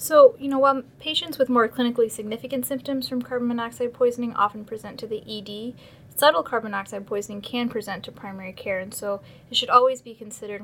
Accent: American